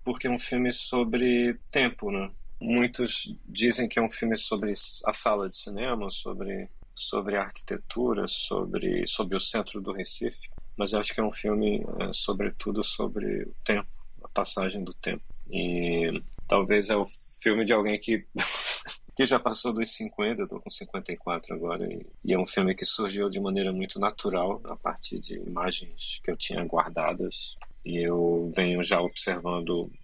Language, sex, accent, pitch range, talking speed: Portuguese, male, Brazilian, 95-115 Hz, 170 wpm